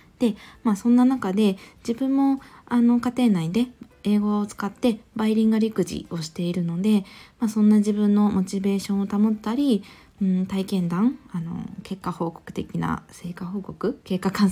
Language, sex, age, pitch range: Japanese, female, 20-39, 180-235 Hz